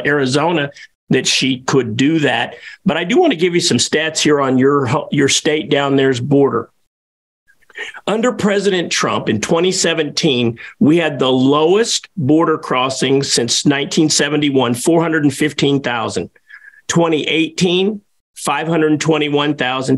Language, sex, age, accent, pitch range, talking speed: English, male, 50-69, American, 130-165 Hz, 115 wpm